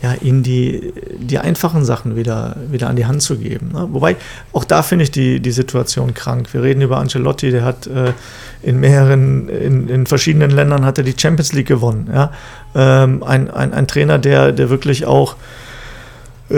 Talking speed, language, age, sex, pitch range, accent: 190 wpm, German, 40-59, male, 125-145 Hz, German